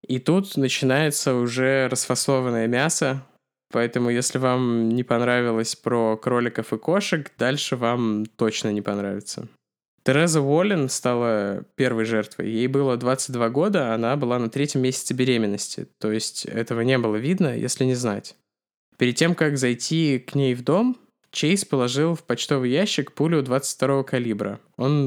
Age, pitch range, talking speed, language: 20-39, 115-140 Hz, 145 wpm, Russian